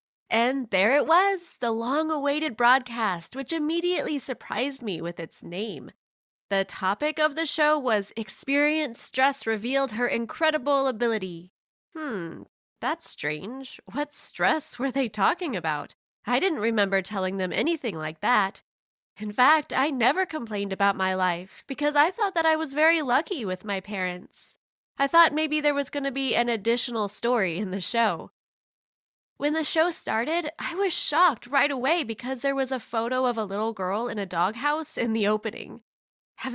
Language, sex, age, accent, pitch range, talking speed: English, female, 20-39, American, 215-295 Hz, 165 wpm